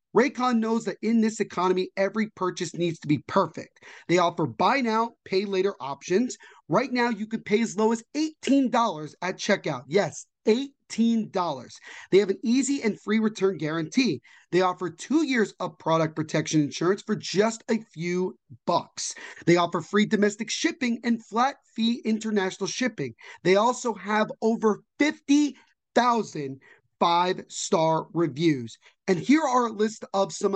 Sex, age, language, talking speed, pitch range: male, 30-49, English, 150 wpm, 185-240 Hz